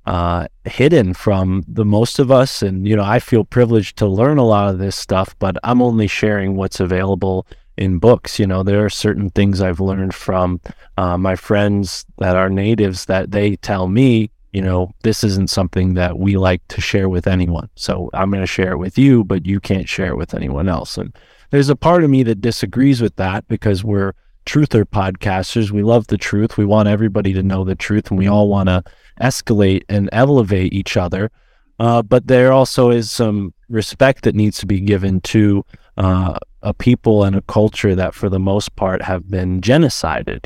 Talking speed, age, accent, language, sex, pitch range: 205 wpm, 30-49, American, English, male, 95-115 Hz